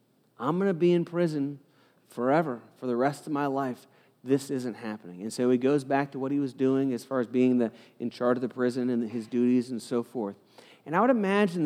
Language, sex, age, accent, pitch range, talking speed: English, male, 40-59, American, 125-170 Hz, 235 wpm